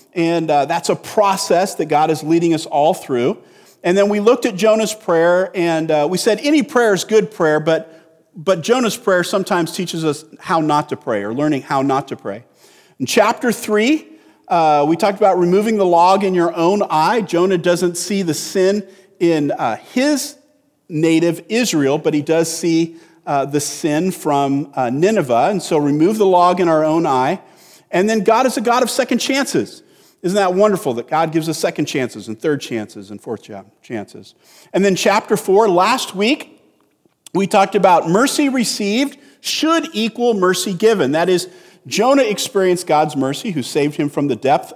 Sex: male